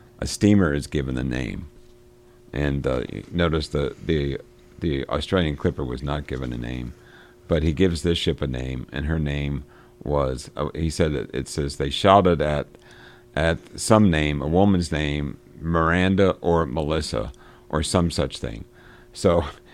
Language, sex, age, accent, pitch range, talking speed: English, male, 50-69, American, 65-85 Hz, 160 wpm